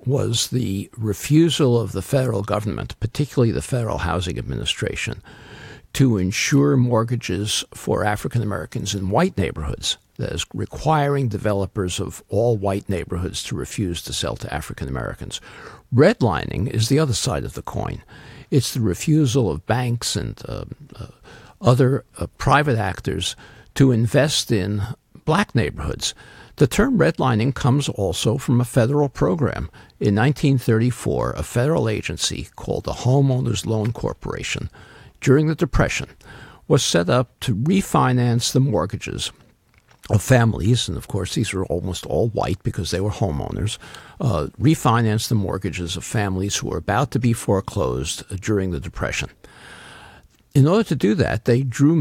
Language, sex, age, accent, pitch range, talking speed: English, male, 60-79, American, 100-135 Hz, 145 wpm